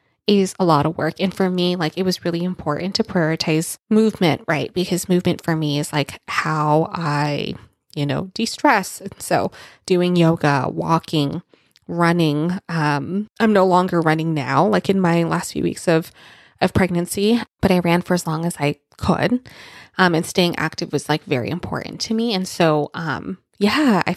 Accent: American